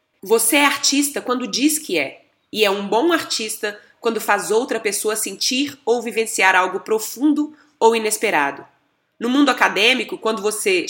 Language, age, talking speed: Portuguese, 20-39, 155 wpm